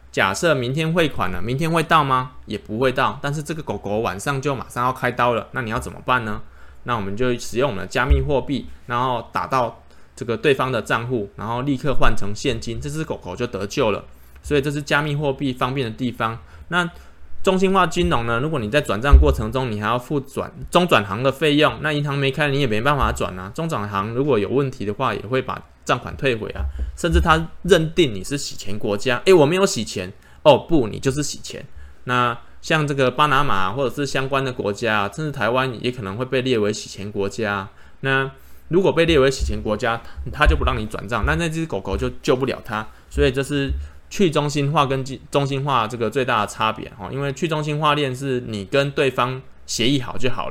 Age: 20-39